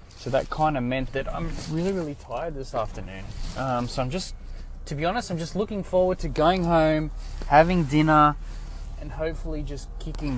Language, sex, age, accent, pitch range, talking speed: English, male, 20-39, Australian, 115-175 Hz, 185 wpm